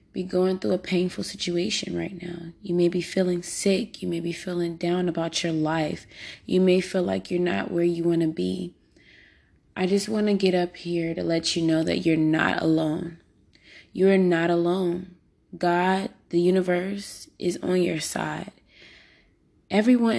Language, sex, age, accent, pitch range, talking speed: English, female, 20-39, American, 160-185 Hz, 175 wpm